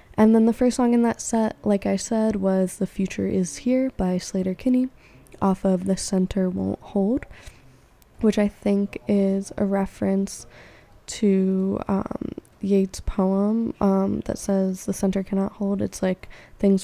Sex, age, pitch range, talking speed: female, 10-29, 190-215 Hz, 160 wpm